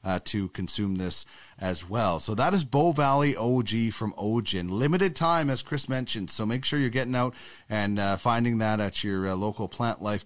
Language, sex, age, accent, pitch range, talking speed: English, male, 30-49, American, 110-150 Hz, 205 wpm